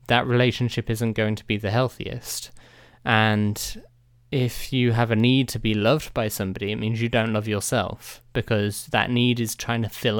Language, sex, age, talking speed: English, male, 20-39, 190 wpm